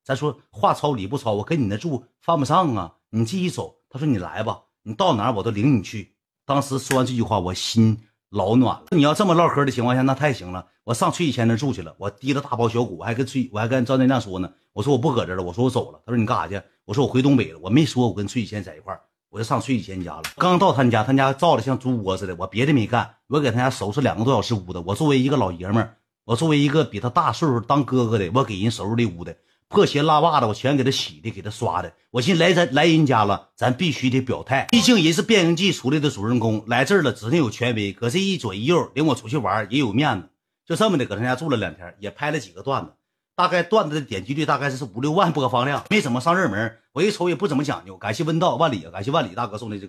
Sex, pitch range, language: male, 105-145 Hz, Chinese